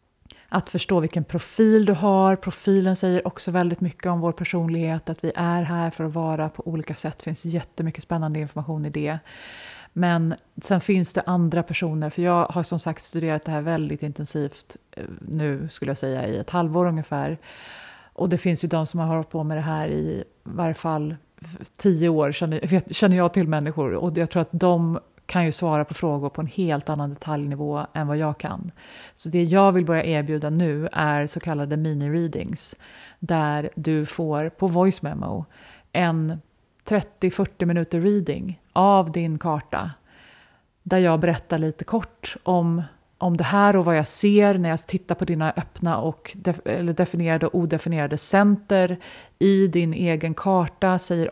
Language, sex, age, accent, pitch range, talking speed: Swedish, female, 30-49, native, 155-180 Hz, 175 wpm